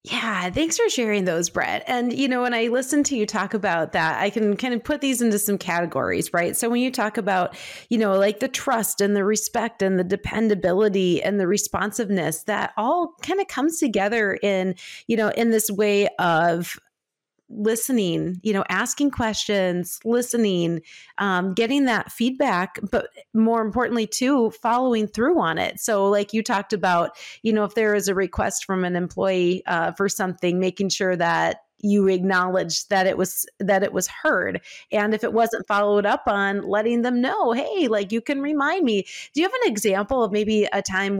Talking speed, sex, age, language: 190 wpm, female, 30-49, English